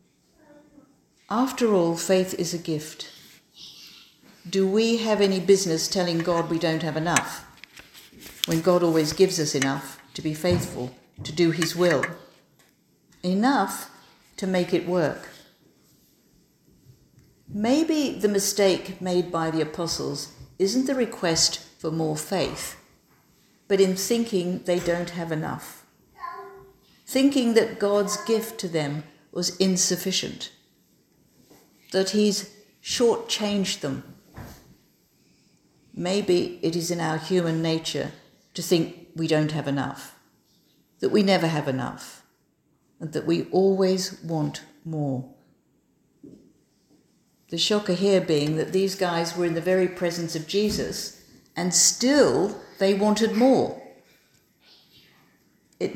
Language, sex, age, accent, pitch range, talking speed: English, female, 50-69, British, 160-205 Hz, 120 wpm